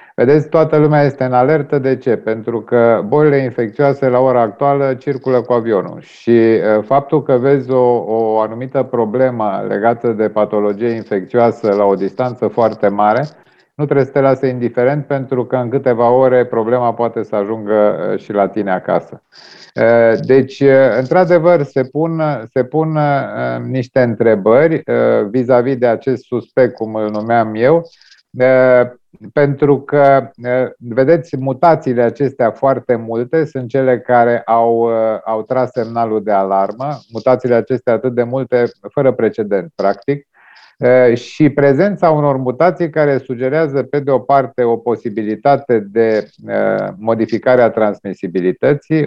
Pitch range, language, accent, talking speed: 115-140 Hz, Romanian, native, 135 wpm